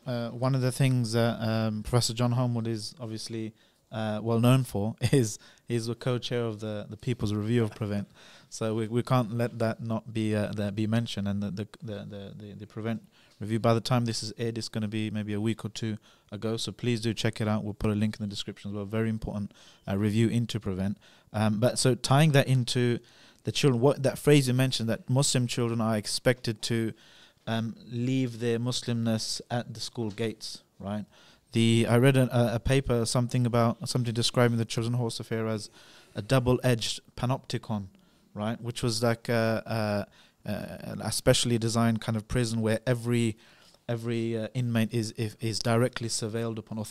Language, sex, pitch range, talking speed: English, male, 110-125 Hz, 200 wpm